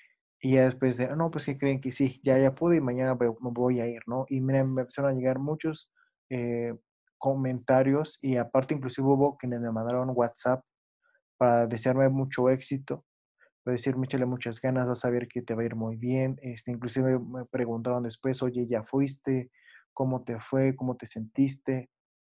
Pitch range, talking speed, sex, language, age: 120-140 Hz, 190 wpm, male, Spanish, 20-39